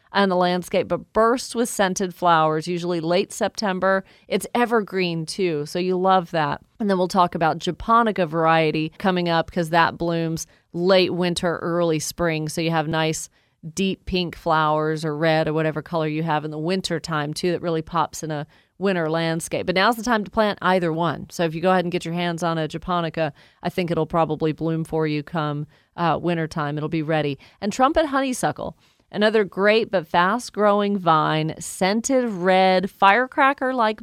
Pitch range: 165-205 Hz